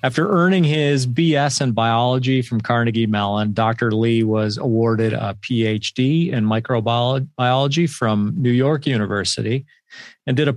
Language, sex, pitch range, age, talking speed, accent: English, male, 110-135 Hz, 40-59, 135 wpm, American